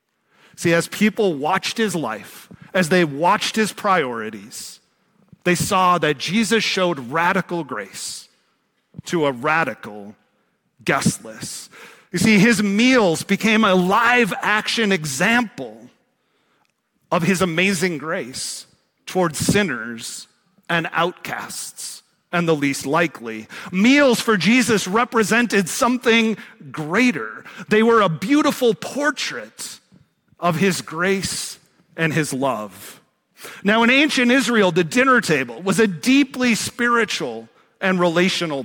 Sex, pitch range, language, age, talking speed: male, 170-225 Hz, English, 40-59, 115 wpm